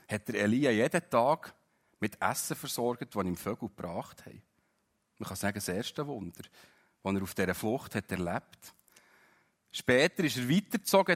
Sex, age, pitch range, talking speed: male, 40-59, 100-135 Hz, 165 wpm